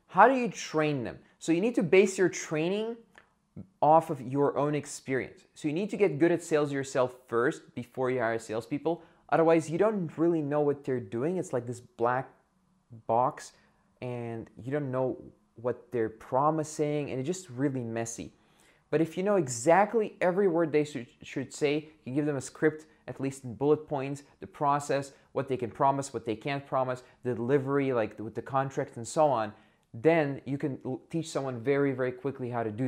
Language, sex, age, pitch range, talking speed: English, male, 20-39, 115-155 Hz, 195 wpm